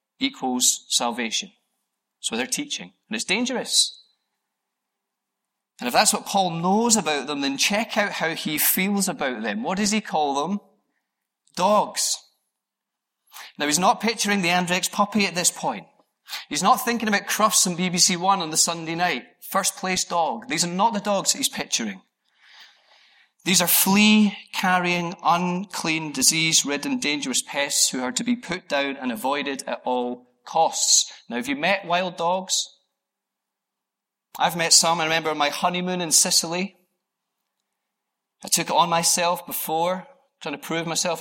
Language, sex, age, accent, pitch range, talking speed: English, male, 30-49, British, 160-205 Hz, 155 wpm